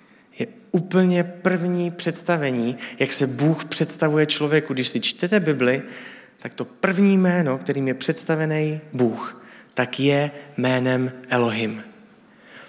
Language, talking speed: Czech, 115 wpm